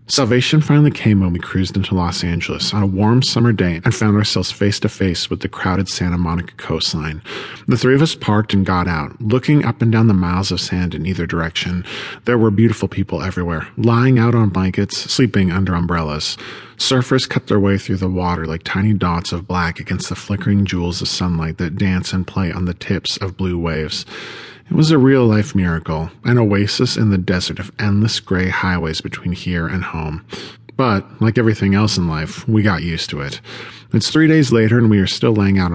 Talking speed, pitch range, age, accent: 210 wpm, 90-115 Hz, 40-59, American